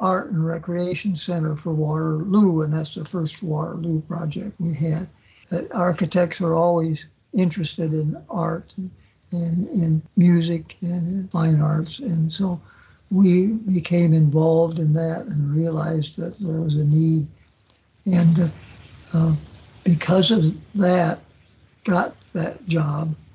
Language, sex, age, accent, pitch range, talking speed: English, male, 60-79, American, 160-190 Hz, 130 wpm